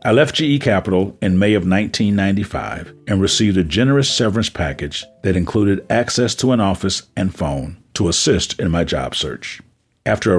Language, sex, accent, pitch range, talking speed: English, male, American, 90-120 Hz, 175 wpm